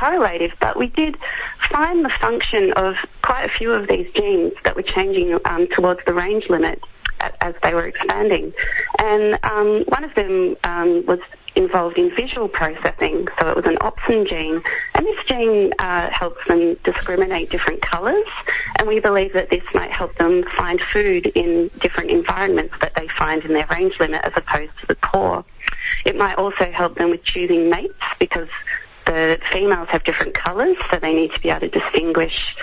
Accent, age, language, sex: Australian, 30-49, English, female